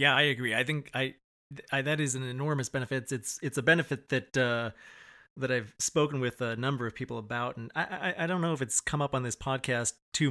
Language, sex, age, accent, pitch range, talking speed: English, male, 30-49, American, 120-140 Hz, 240 wpm